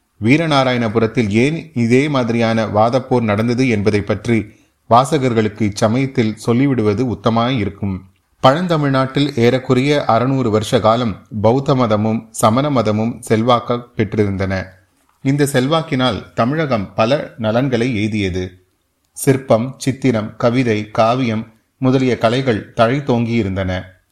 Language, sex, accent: Tamil, male, native